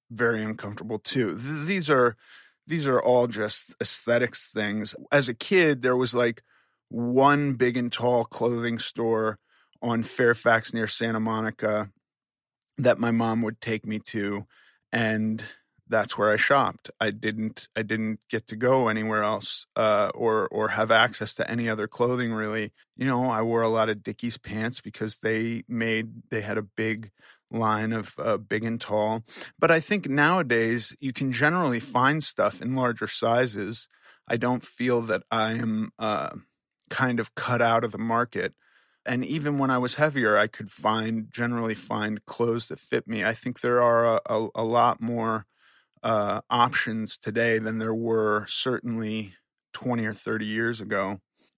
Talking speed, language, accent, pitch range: 165 wpm, English, American, 110-125 Hz